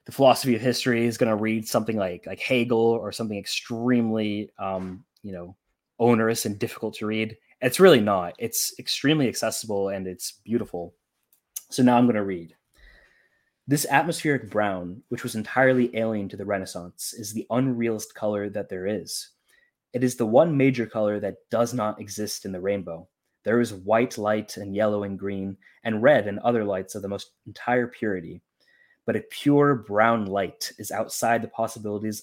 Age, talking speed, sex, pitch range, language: 20-39, 175 wpm, male, 100-120 Hz, English